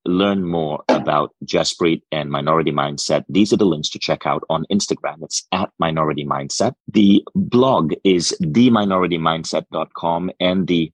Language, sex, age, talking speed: English, male, 30-49, 145 wpm